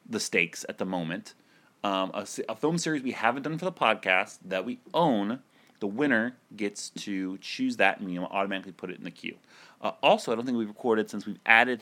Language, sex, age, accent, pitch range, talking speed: English, male, 30-49, American, 95-120 Hz, 225 wpm